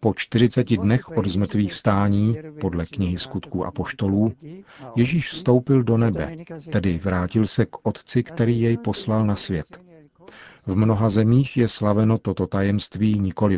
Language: Czech